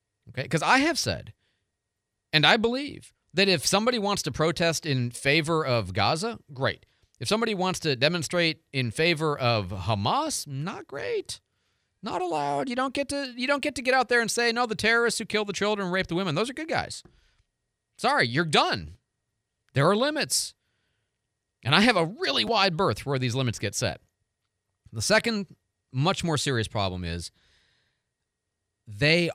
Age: 40-59